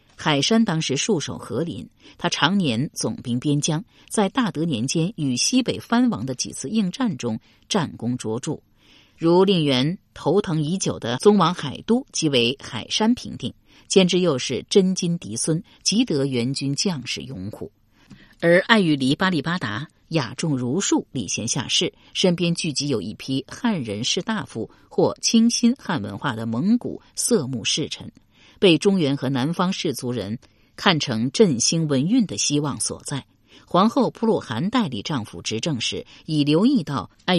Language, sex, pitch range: Chinese, female, 125-195 Hz